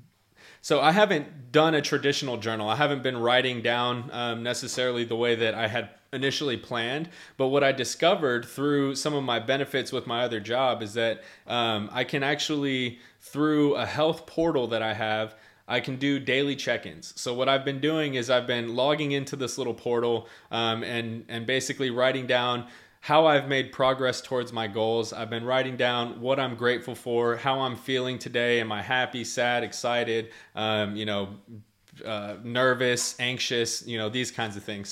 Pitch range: 115-130 Hz